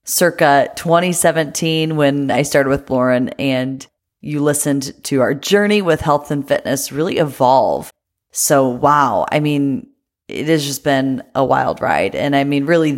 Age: 30-49